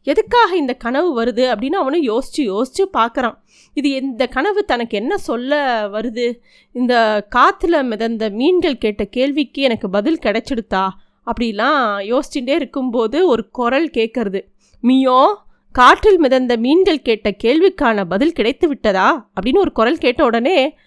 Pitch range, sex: 235-300 Hz, female